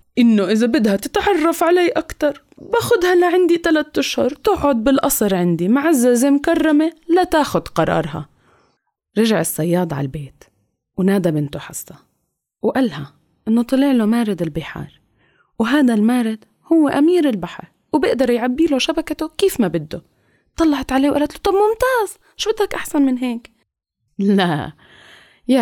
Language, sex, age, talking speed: English, female, 20-39, 135 wpm